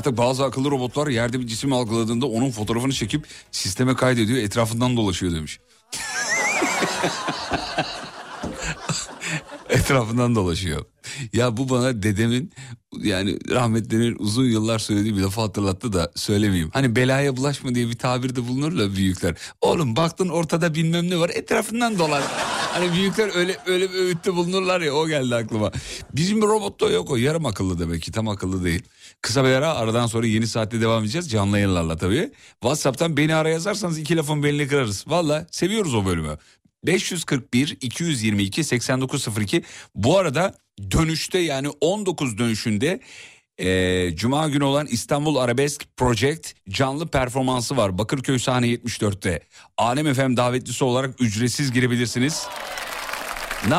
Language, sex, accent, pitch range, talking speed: Turkish, male, native, 110-155 Hz, 135 wpm